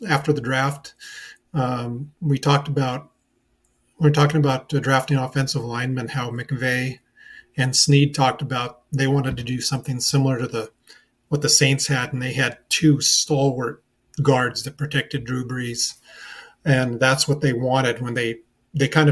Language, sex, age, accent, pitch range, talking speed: English, male, 40-59, American, 125-145 Hz, 155 wpm